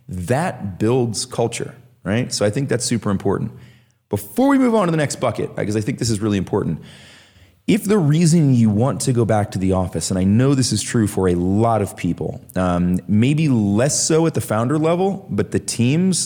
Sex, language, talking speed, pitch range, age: male, English, 215 wpm, 100-130 Hz, 30-49